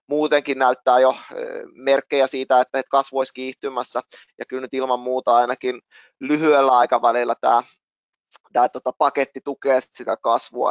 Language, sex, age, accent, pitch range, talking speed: Finnish, male, 20-39, native, 125-135 Hz, 135 wpm